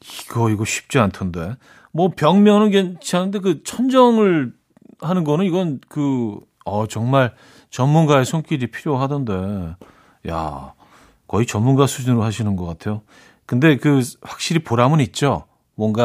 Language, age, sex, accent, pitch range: Korean, 40-59, male, native, 110-155 Hz